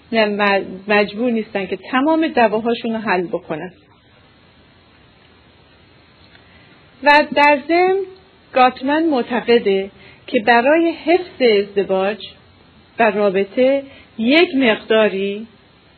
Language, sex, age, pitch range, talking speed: Persian, female, 40-59, 205-265 Hz, 80 wpm